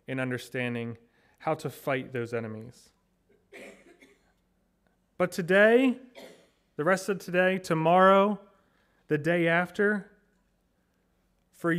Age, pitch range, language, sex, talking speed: 30-49, 150-210 Hz, English, male, 90 wpm